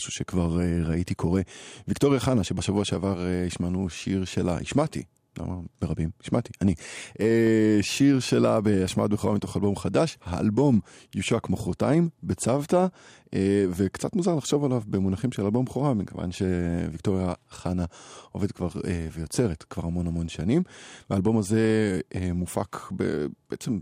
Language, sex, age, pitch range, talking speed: Hebrew, male, 20-39, 90-110 Hz, 130 wpm